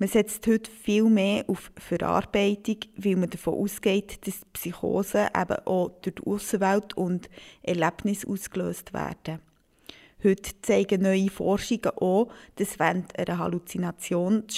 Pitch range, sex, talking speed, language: 185-215 Hz, female, 135 wpm, German